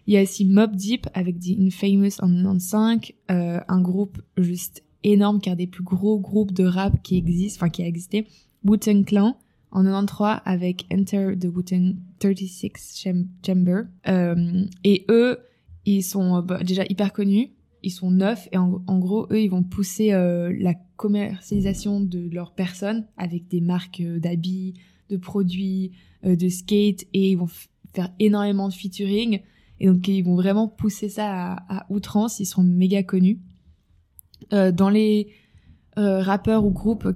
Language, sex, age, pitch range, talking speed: French, female, 20-39, 180-205 Hz, 170 wpm